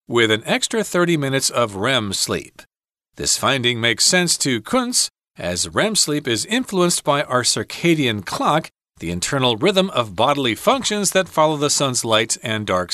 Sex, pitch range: male, 115-175 Hz